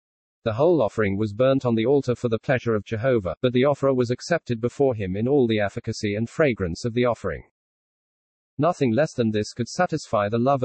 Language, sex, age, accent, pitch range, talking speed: English, male, 40-59, British, 110-140 Hz, 210 wpm